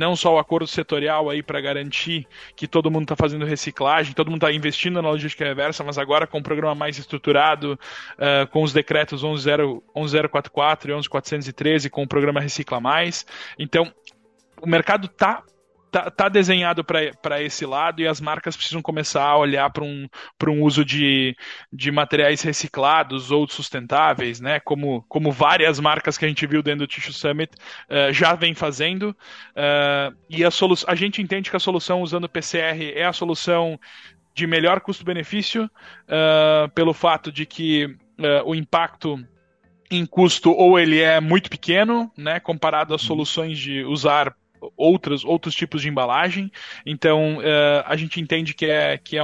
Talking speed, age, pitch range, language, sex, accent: 170 wpm, 20-39, 145-165 Hz, Portuguese, male, Brazilian